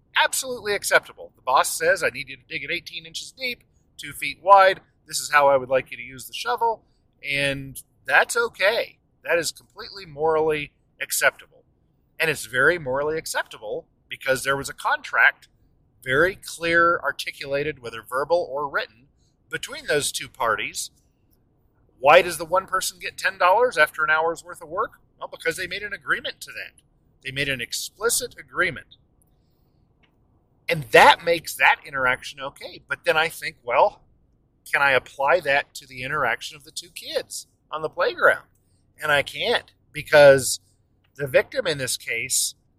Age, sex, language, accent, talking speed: 40-59, male, English, American, 165 wpm